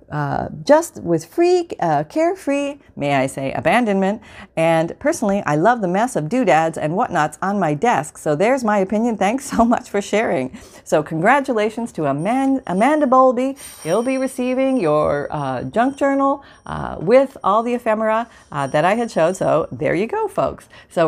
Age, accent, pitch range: 40-59, American, 155-250 Hz